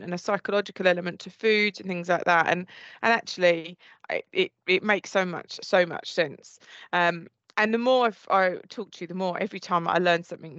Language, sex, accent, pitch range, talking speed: English, female, British, 175-205 Hz, 220 wpm